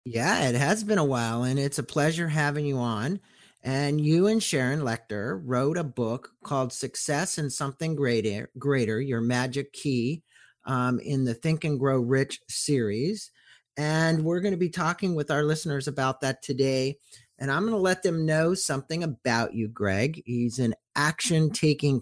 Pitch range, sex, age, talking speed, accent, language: 115-145 Hz, male, 50-69, 175 wpm, American, English